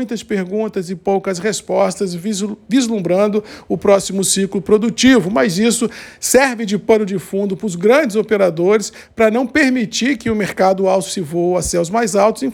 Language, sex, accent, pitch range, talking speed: Portuguese, male, Brazilian, 195-235 Hz, 170 wpm